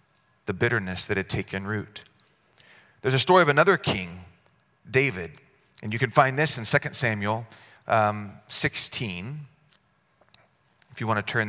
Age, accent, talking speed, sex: 30-49, American, 145 wpm, male